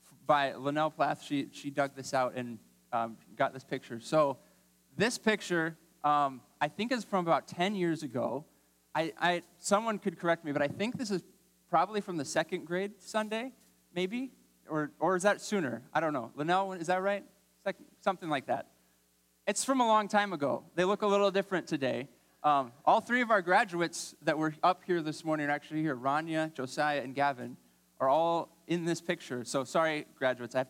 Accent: American